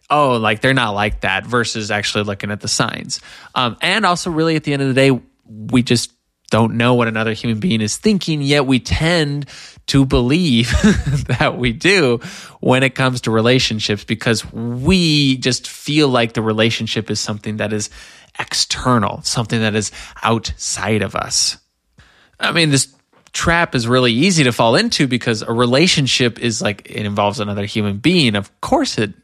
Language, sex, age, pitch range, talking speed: English, male, 20-39, 110-135 Hz, 175 wpm